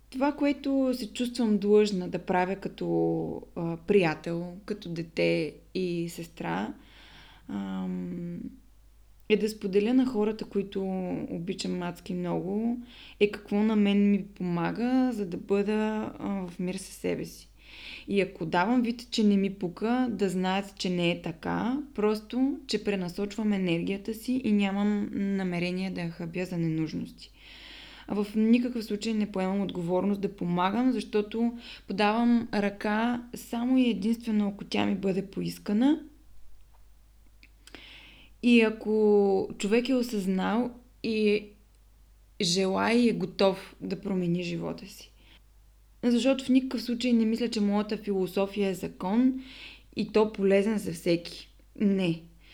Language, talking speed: Bulgarian, 130 wpm